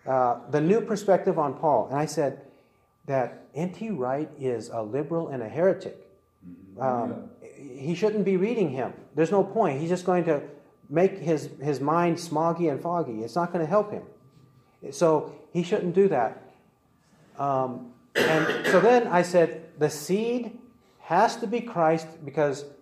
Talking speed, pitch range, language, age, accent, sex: 165 wpm, 140-185 Hz, English, 40-59, American, male